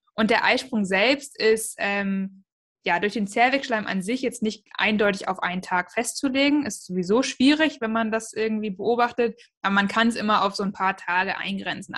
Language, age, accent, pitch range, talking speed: German, 20-39, German, 190-230 Hz, 190 wpm